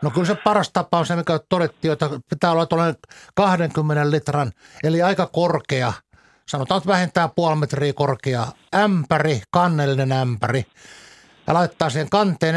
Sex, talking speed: male, 150 wpm